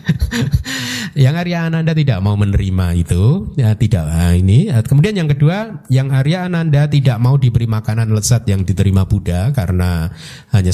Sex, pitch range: male, 100-135 Hz